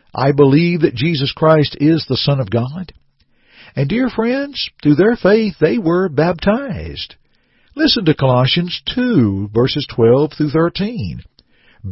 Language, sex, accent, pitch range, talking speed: English, male, American, 120-185 Hz, 125 wpm